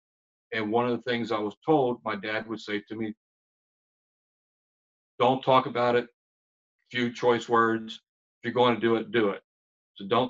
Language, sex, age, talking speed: English, male, 50-69, 180 wpm